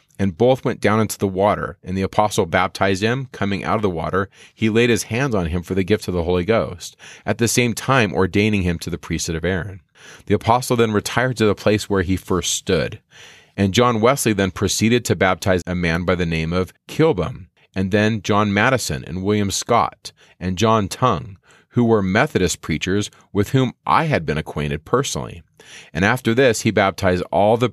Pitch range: 90-110 Hz